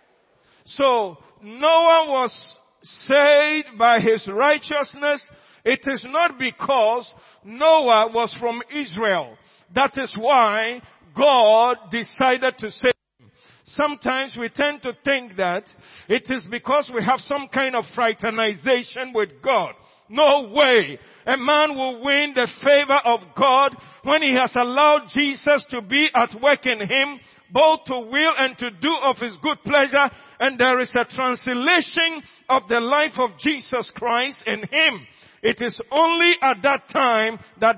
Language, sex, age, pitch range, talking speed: English, male, 50-69, 230-280 Hz, 145 wpm